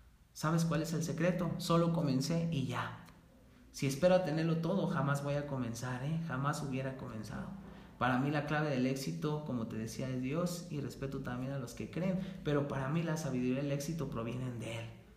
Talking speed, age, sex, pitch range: 200 wpm, 30-49, male, 115-155 Hz